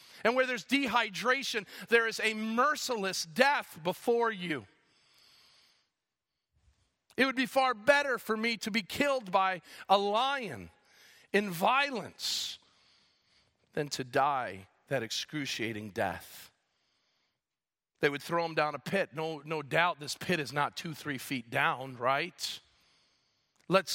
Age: 40-59